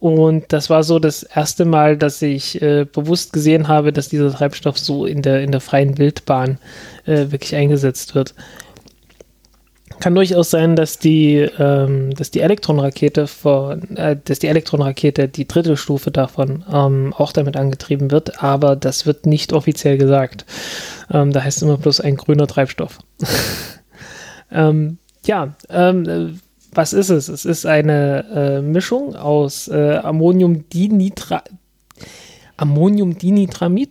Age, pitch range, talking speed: 20-39, 145-170 Hz, 140 wpm